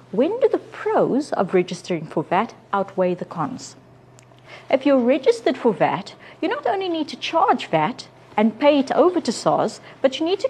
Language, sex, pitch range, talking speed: English, female, 180-270 Hz, 190 wpm